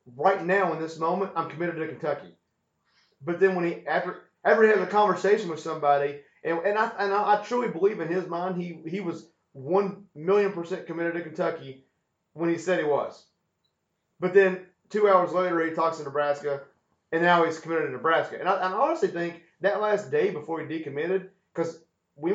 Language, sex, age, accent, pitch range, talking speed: English, male, 30-49, American, 155-195 Hz, 200 wpm